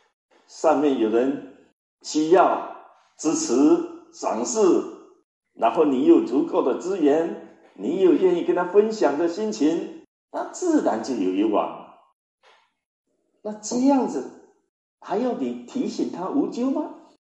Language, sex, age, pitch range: Chinese, male, 50-69, 245-360 Hz